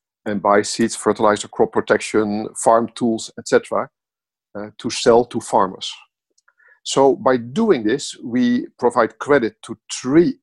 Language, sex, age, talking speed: English, male, 50-69, 130 wpm